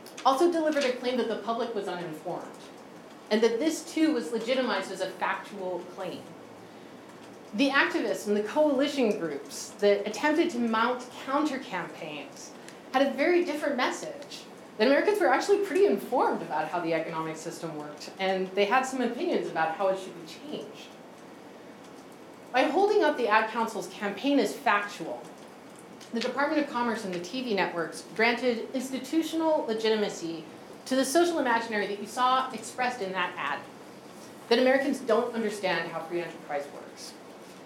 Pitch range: 190-265 Hz